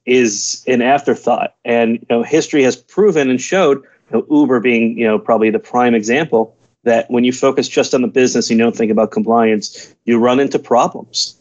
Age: 30-49